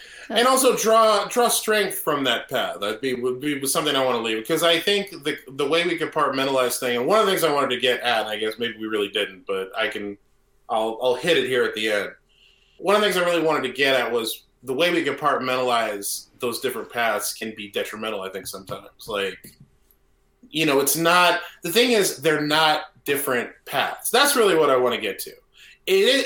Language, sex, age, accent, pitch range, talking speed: English, male, 20-39, American, 125-180 Hz, 225 wpm